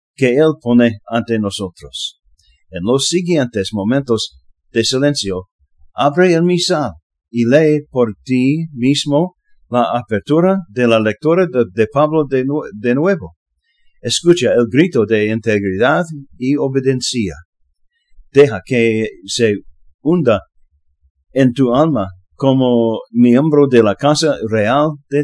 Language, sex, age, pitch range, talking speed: English, male, 50-69, 100-145 Hz, 120 wpm